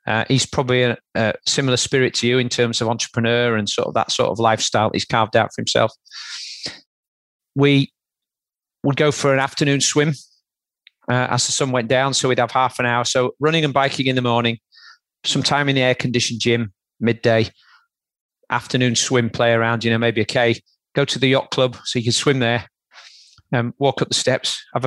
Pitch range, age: 120-140 Hz, 40-59